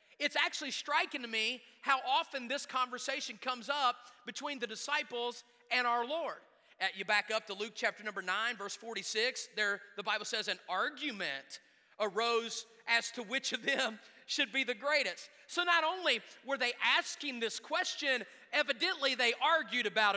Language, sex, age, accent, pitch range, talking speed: English, male, 30-49, American, 225-275 Hz, 165 wpm